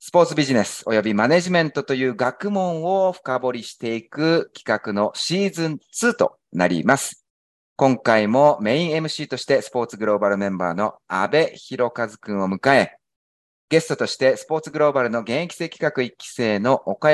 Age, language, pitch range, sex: 30-49, Japanese, 110-165 Hz, male